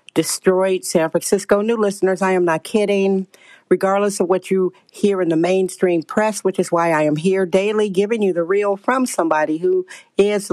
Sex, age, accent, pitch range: female, 50-69, American, 170-205 Hz